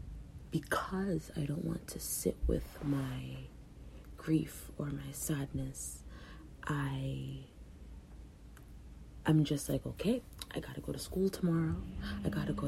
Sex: female